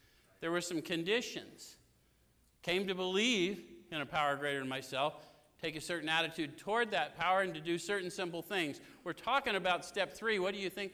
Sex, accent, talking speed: male, American, 190 wpm